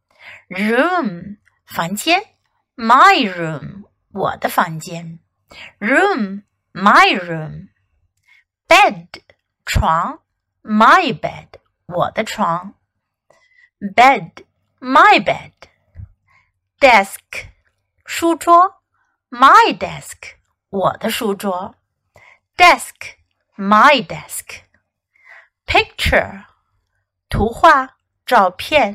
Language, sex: Chinese, female